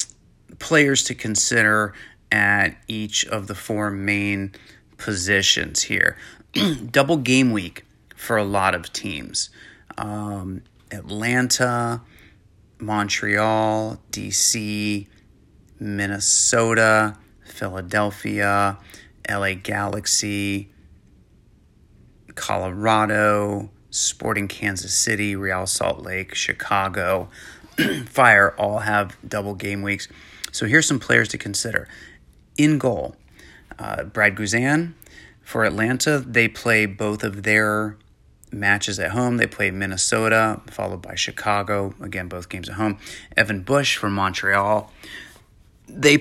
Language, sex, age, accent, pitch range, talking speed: English, male, 30-49, American, 100-115 Hz, 100 wpm